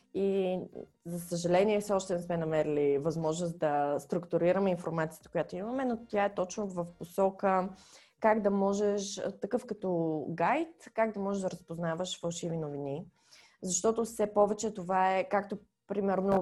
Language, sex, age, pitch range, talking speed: Bulgarian, female, 20-39, 170-210 Hz, 145 wpm